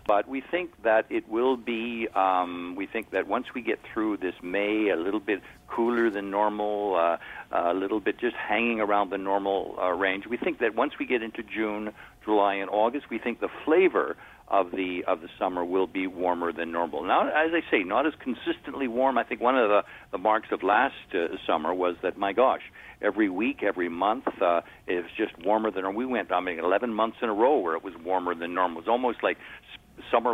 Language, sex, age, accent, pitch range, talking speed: English, male, 50-69, American, 100-135 Hz, 220 wpm